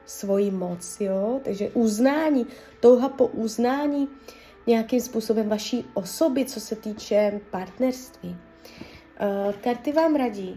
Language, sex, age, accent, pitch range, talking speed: Czech, female, 20-39, native, 205-255 Hz, 100 wpm